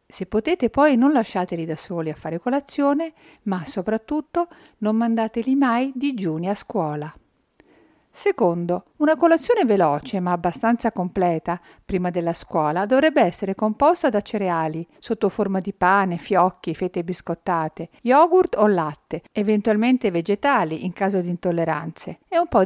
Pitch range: 175-245 Hz